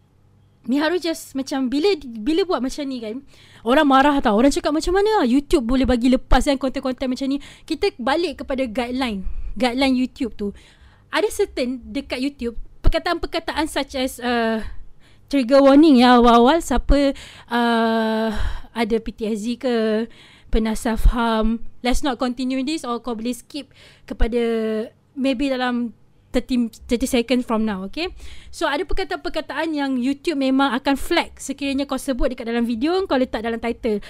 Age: 20-39